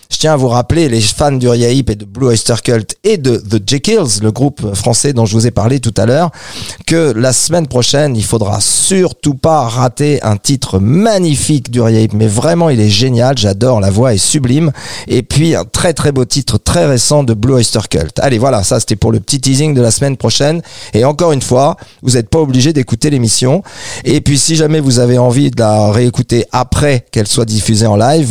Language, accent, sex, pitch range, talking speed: French, French, male, 110-140 Hz, 220 wpm